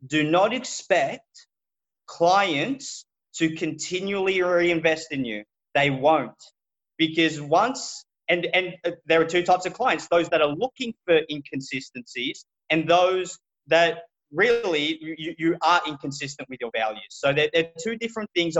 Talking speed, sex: 140 wpm, male